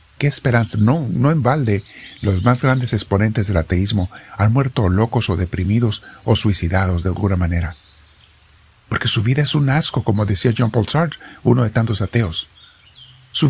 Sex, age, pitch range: male, 50-69, 100-145 Hz